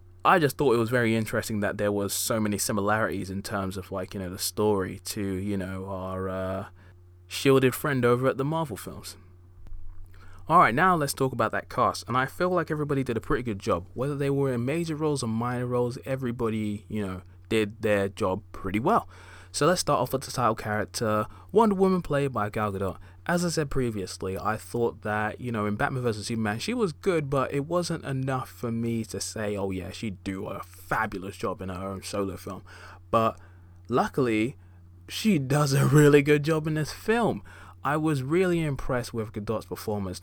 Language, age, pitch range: English, 20-39, 95-120 Hz